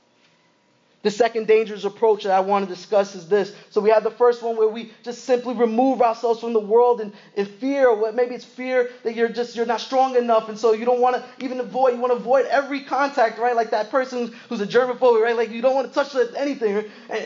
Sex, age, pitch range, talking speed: male, 20-39, 215-255 Hz, 245 wpm